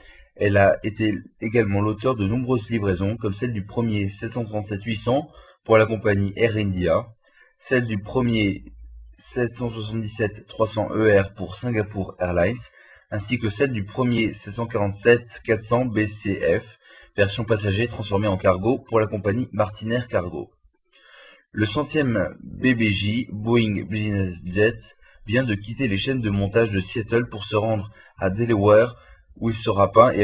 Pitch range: 100-115 Hz